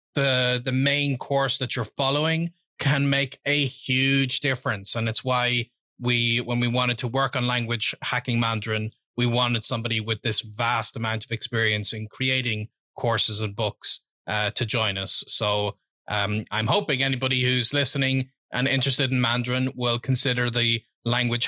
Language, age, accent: English, 30-49, Irish